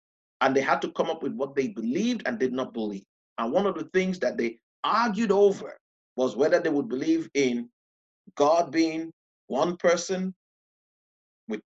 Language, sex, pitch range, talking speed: English, male, 140-185 Hz, 175 wpm